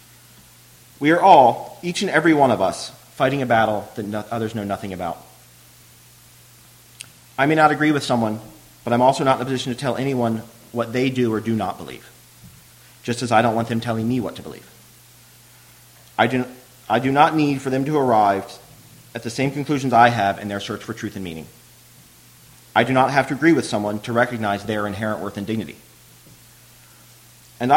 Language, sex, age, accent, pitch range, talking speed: English, male, 30-49, American, 110-130 Hz, 190 wpm